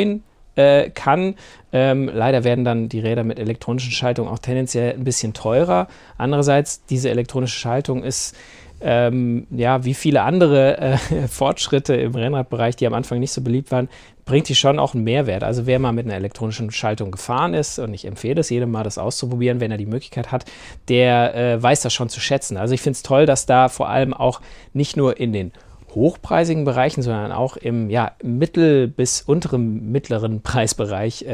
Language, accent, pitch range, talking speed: German, German, 115-135 Hz, 180 wpm